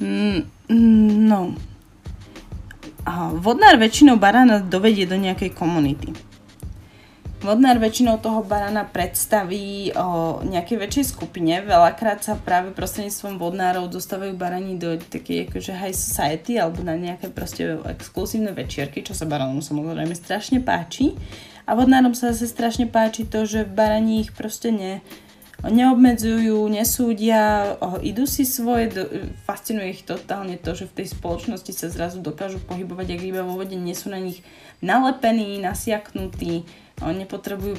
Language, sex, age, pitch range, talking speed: Slovak, female, 20-39, 170-220 Hz, 135 wpm